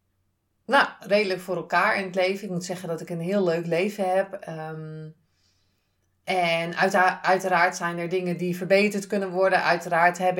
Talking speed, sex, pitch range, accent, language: 175 wpm, female, 165-200 Hz, Dutch, Dutch